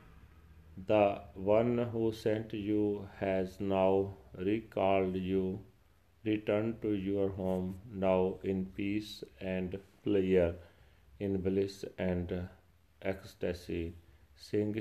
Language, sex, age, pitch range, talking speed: Punjabi, male, 40-59, 90-100 Hz, 95 wpm